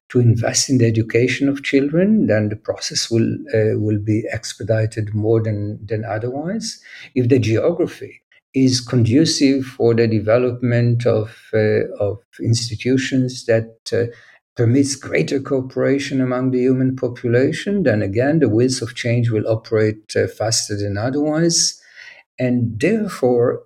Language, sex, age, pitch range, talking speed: English, male, 50-69, 110-135 Hz, 135 wpm